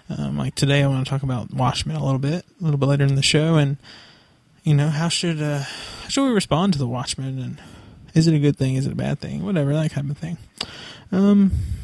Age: 20-39